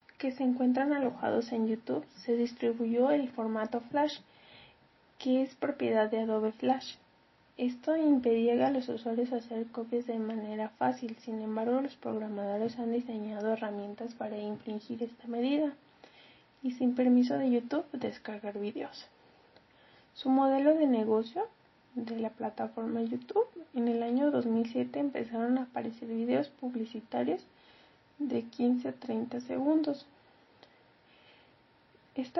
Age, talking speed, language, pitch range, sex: 30-49, 125 wpm, Spanish, 230-265 Hz, female